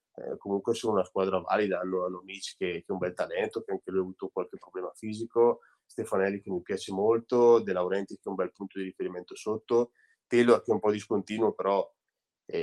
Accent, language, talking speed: native, Italian, 220 wpm